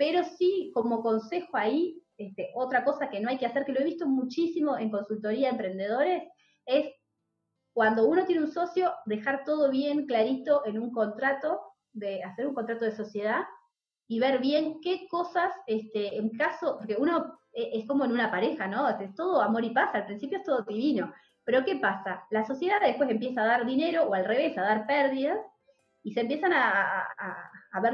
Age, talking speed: 20-39, 190 wpm